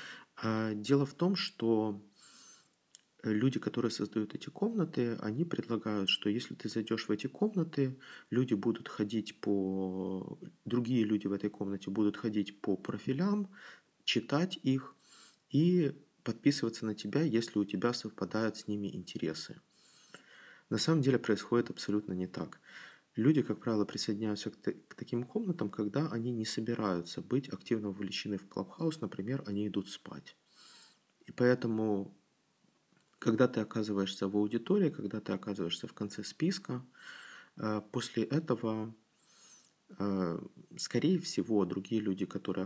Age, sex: 30-49, male